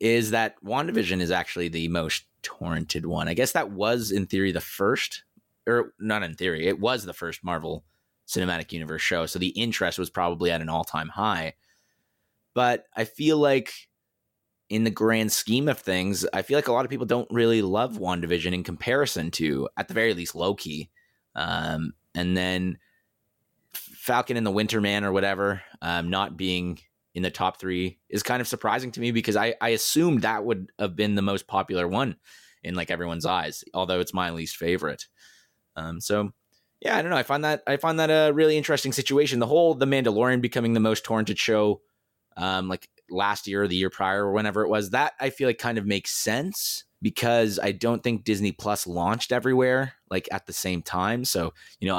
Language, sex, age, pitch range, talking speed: English, male, 20-39, 90-115 Hz, 195 wpm